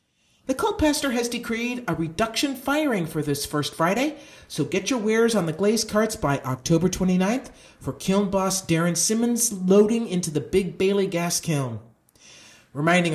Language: English